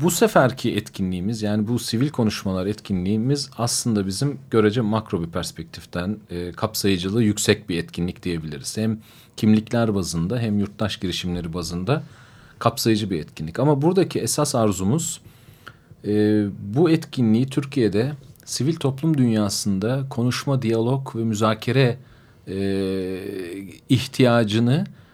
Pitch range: 100-130 Hz